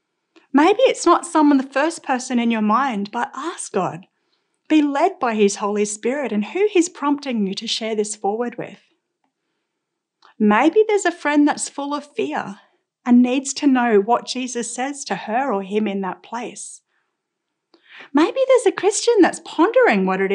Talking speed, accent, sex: 175 wpm, Australian, female